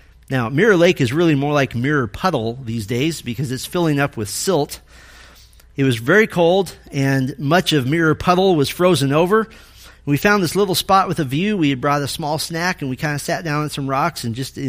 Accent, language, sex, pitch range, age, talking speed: American, English, male, 140-185 Hz, 40-59, 220 wpm